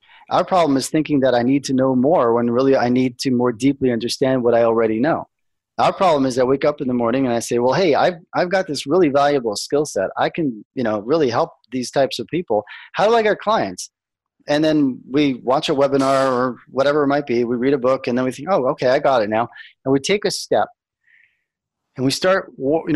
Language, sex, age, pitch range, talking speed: English, male, 30-49, 120-155 Hz, 245 wpm